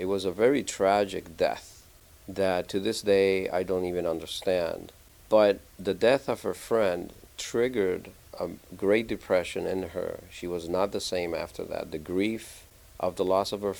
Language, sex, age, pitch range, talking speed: English, male, 50-69, 90-100 Hz, 175 wpm